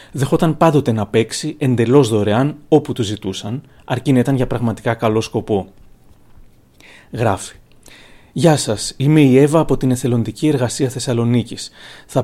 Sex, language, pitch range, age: male, Greek, 115-145 Hz, 30-49